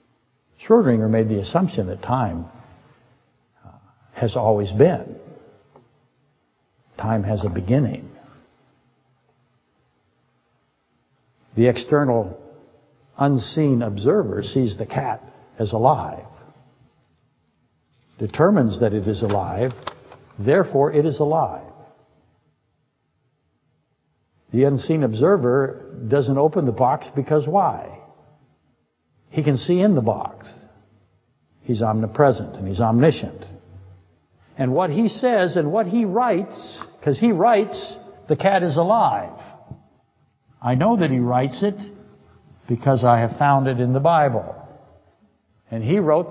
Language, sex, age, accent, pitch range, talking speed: English, male, 60-79, American, 115-175 Hz, 110 wpm